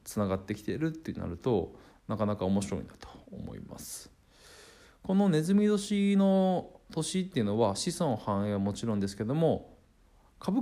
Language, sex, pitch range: Japanese, male, 100-125 Hz